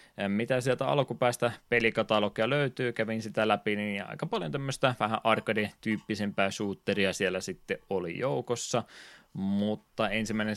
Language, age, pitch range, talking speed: Finnish, 20-39, 95-110 Hz, 120 wpm